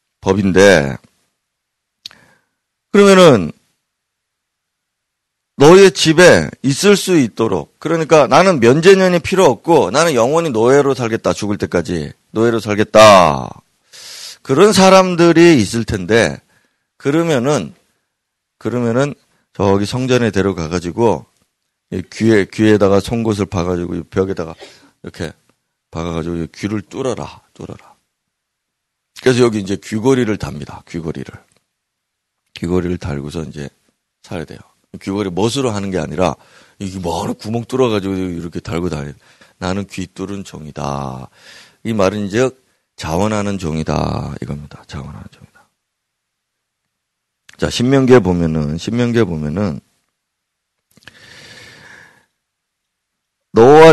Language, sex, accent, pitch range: Korean, male, native, 90-125 Hz